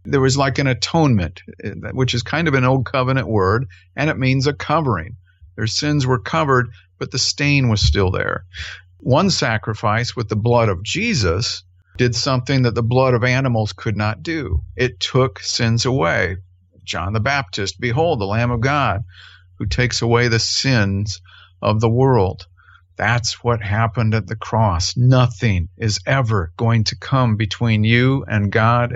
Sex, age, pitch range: male, 50-69, 100-130 Hz